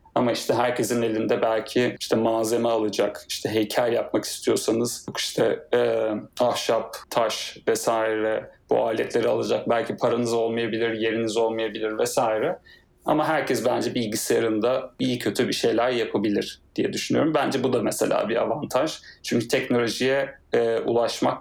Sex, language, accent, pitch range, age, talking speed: male, Turkish, native, 115-135 Hz, 30-49, 130 wpm